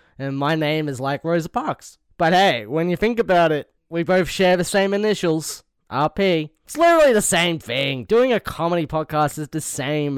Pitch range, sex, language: 130-185 Hz, male, English